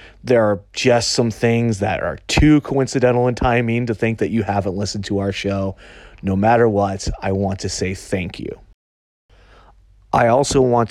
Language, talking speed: English, 175 wpm